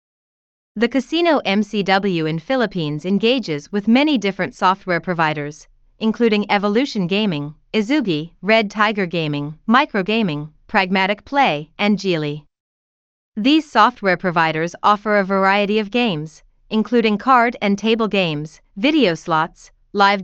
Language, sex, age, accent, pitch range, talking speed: English, female, 30-49, American, 165-225 Hz, 115 wpm